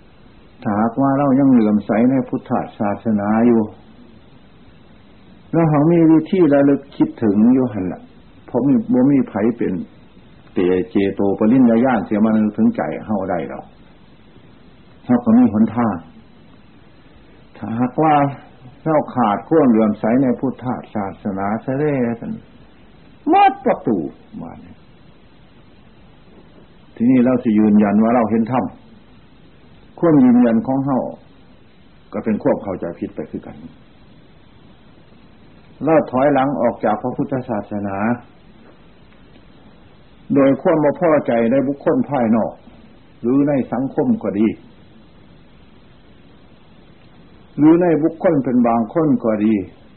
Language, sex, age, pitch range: Thai, male, 60-79, 110-155 Hz